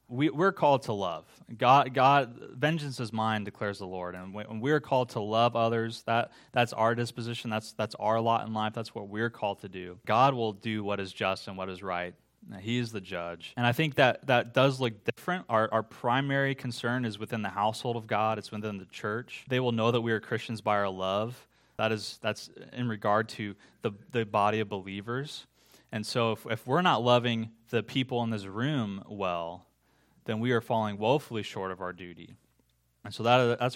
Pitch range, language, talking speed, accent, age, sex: 100-120 Hz, English, 215 wpm, American, 20-39, male